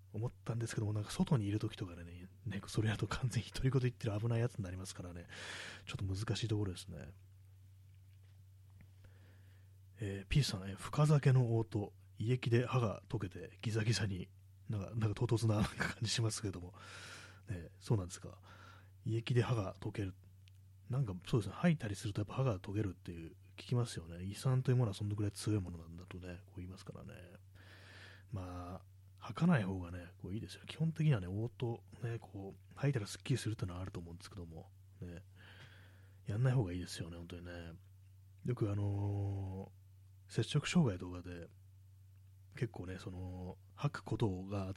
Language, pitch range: Japanese, 95-115 Hz